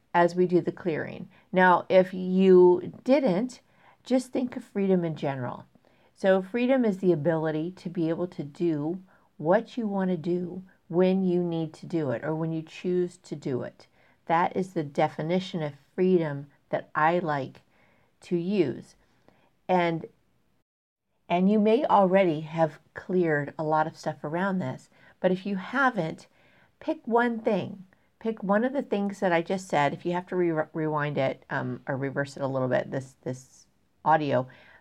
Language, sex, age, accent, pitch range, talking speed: English, female, 50-69, American, 160-195 Hz, 170 wpm